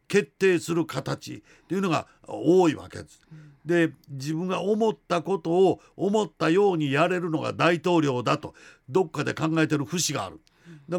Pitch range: 145-175 Hz